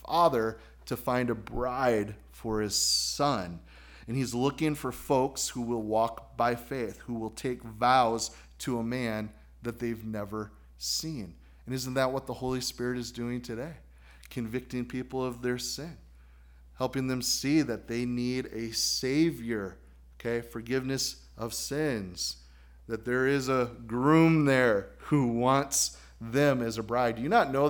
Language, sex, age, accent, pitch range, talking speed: English, male, 30-49, American, 105-130 Hz, 155 wpm